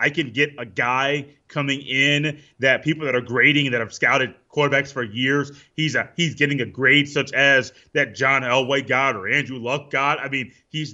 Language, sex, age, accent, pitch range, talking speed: English, male, 30-49, American, 135-160 Hz, 205 wpm